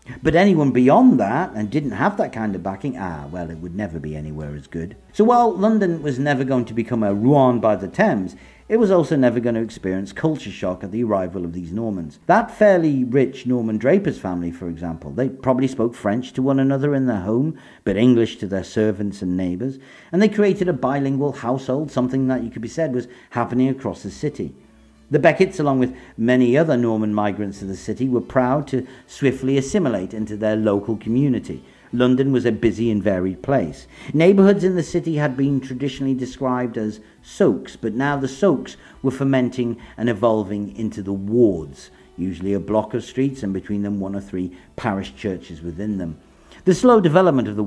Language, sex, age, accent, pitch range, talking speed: English, male, 50-69, British, 105-135 Hz, 200 wpm